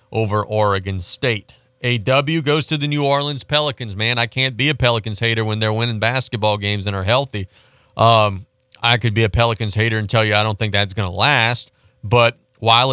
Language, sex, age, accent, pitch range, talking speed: English, male, 40-59, American, 110-135 Hz, 205 wpm